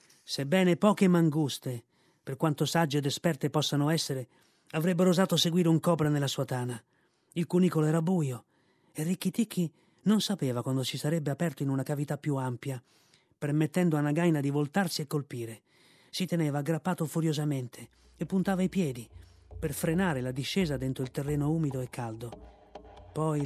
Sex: male